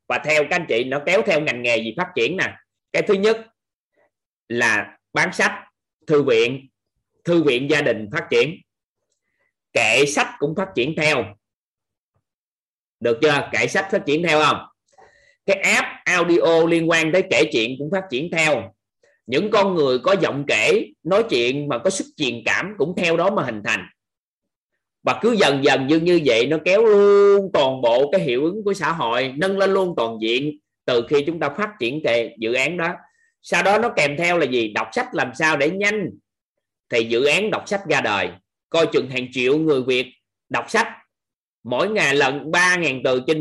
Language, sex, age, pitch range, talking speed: Vietnamese, male, 20-39, 130-195 Hz, 195 wpm